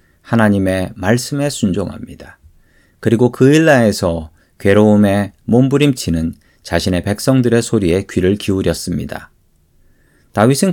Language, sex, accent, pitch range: Korean, male, native, 95-135 Hz